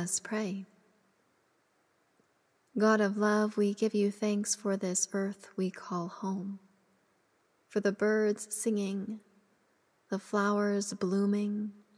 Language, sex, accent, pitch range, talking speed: English, female, American, 195-215 Hz, 105 wpm